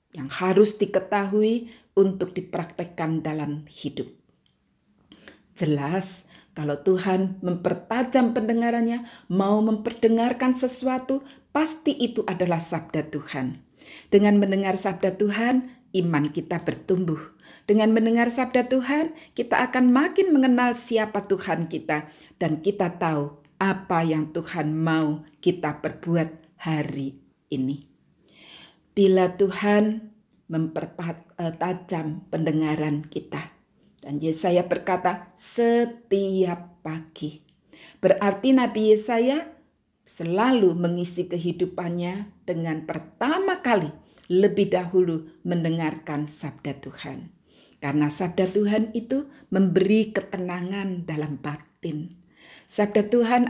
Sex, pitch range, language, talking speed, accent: female, 160-225 Hz, Indonesian, 95 wpm, native